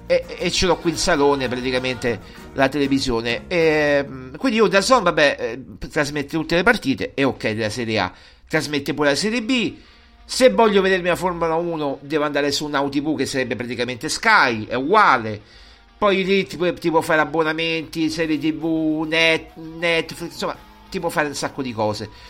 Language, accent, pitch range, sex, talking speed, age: Italian, native, 145-210 Hz, male, 180 wpm, 50-69